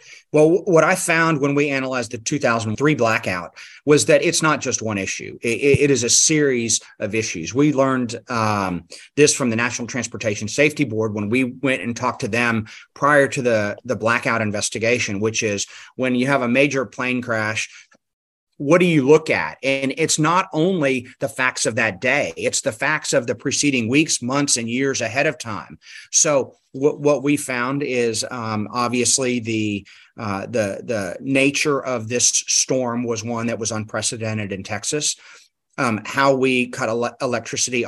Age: 30-49